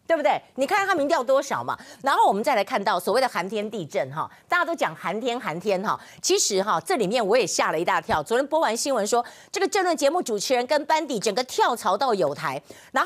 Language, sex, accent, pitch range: Chinese, female, American, 200-295 Hz